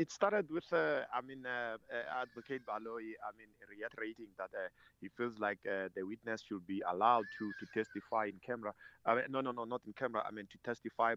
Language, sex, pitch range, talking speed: English, male, 110-135 Hz, 210 wpm